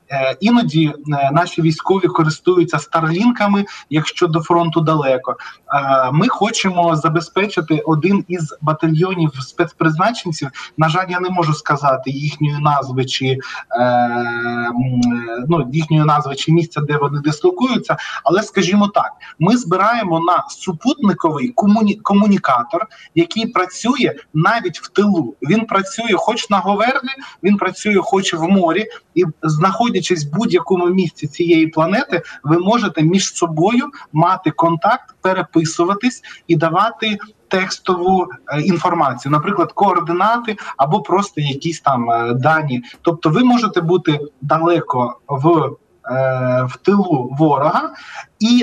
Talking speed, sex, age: 115 wpm, male, 20-39